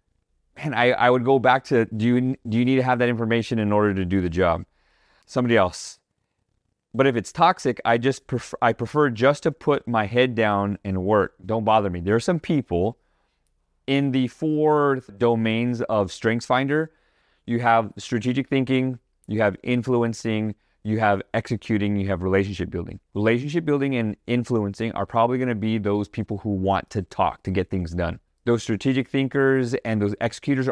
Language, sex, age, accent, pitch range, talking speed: English, male, 30-49, American, 105-125 Hz, 175 wpm